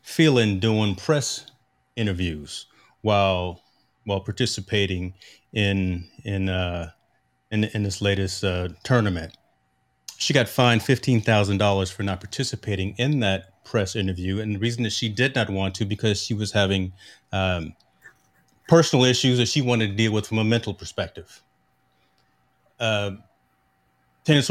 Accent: American